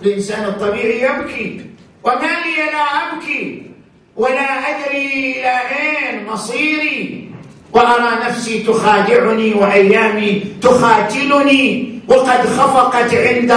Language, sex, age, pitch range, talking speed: Arabic, male, 50-69, 210-255 Hz, 90 wpm